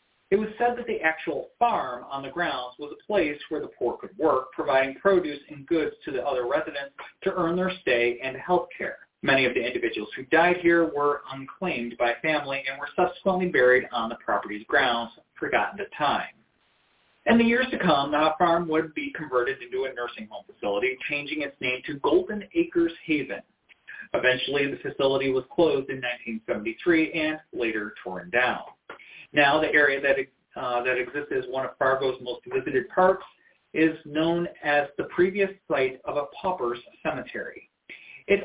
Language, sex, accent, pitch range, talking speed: English, male, American, 130-185 Hz, 175 wpm